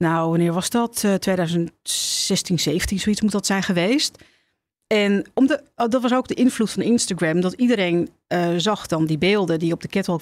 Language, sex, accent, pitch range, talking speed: Dutch, female, Dutch, 165-205 Hz, 200 wpm